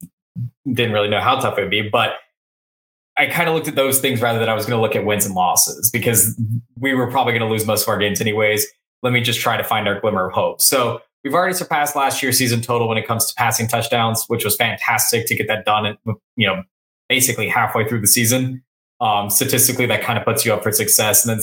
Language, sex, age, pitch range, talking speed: English, male, 20-39, 105-125 Hz, 250 wpm